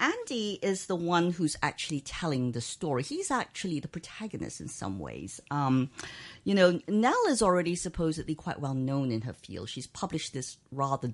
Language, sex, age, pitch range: English, female, 50-69, 125-175 Hz